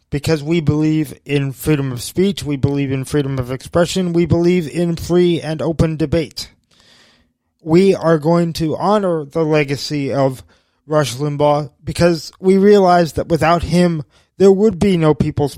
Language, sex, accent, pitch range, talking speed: English, male, American, 120-165 Hz, 160 wpm